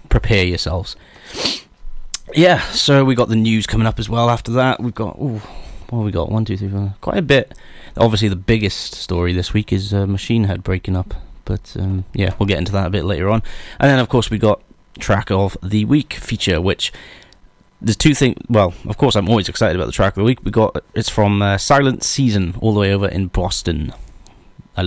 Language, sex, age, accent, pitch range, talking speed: English, male, 30-49, British, 95-115 Hz, 220 wpm